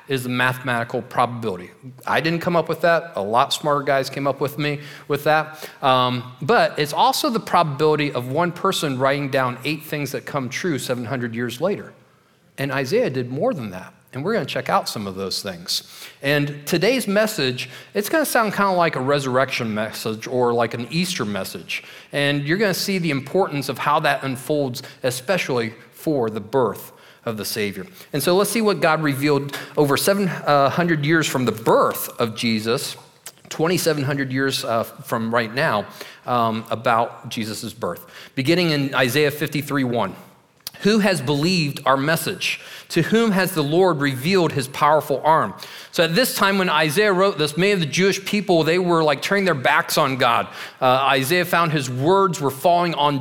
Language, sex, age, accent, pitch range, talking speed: English, male, 40-59, American, 130-175 Hz, 180 wpm